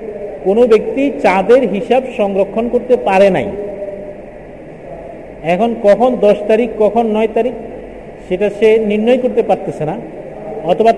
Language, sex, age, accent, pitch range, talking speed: Bengali, male, 50-69, native, 200-250 Hz, 120 wpm